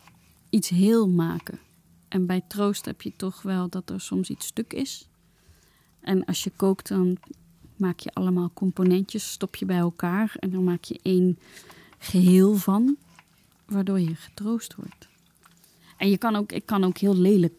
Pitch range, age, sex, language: 175-200 Hz, 30-49, female, Dutch